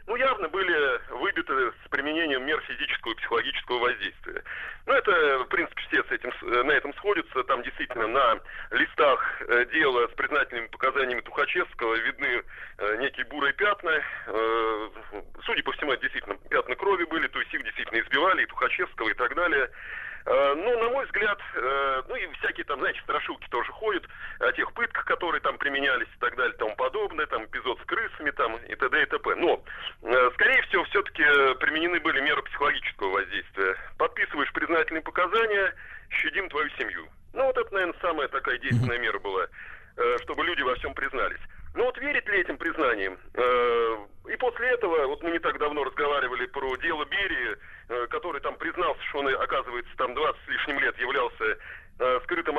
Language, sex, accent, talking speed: Russian, male, native, 165 wpm